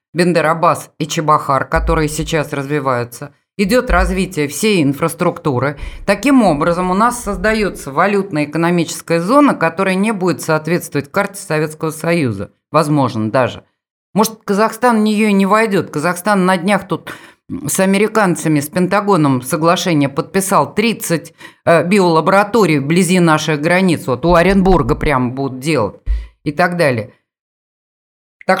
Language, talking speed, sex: Russian, 120 wpm, female